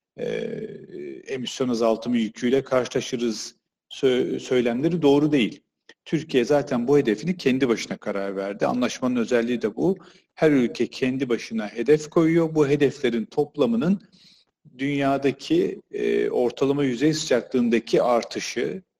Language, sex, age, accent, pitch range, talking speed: Turkish, male, 40-59, native, 120-180 Hz, 105 wpm